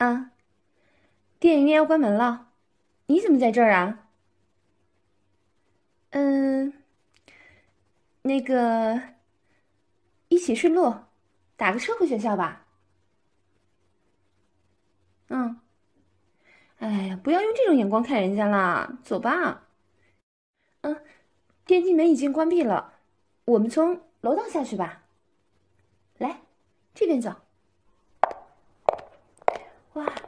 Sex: female